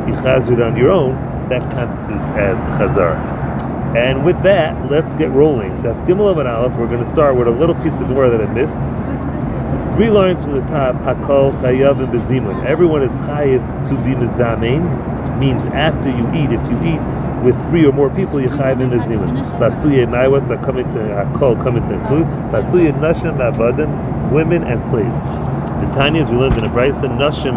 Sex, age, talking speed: male, 40-59, 190 wpm